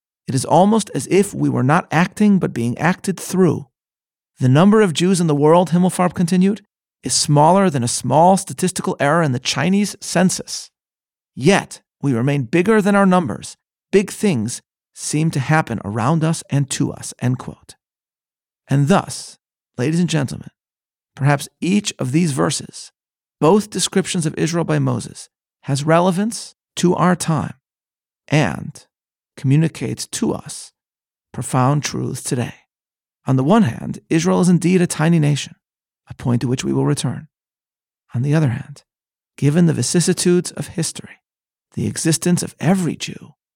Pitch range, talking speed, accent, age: 135-180 Hz, 155 wpm, American, 40-59